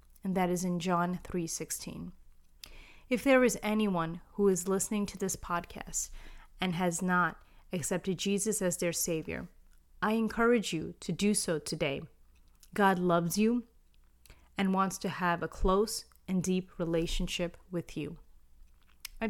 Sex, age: female, 30-49